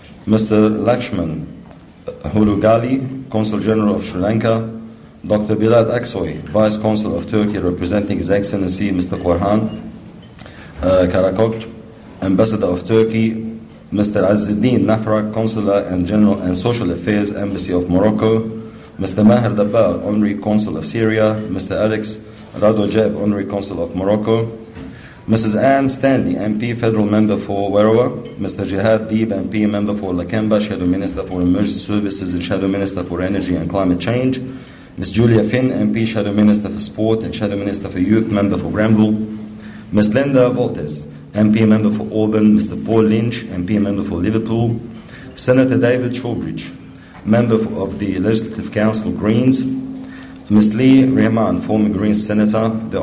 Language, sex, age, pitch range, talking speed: English, male, 50-69, 100-110 Hz, 140 wpm